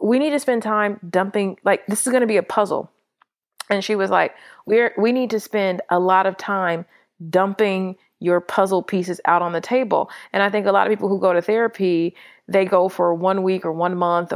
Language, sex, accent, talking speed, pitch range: English, female, American, 225 wpm, 175-210 Hz